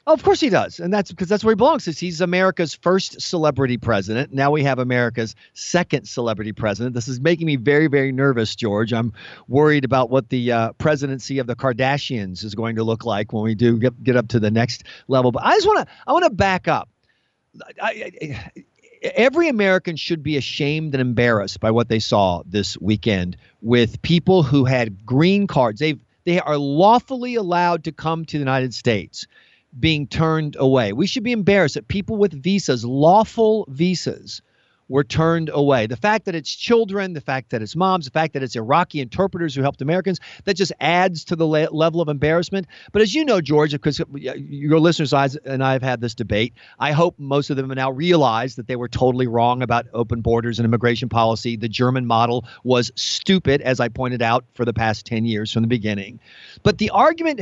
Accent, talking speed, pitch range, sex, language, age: American, 205 wpm, 120-170 Hz, male, English, 50-69